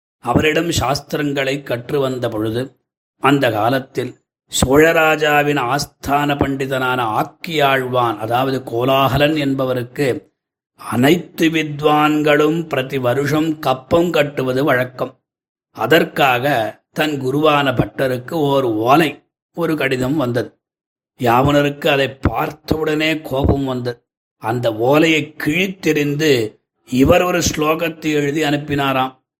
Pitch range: 130-150 Hz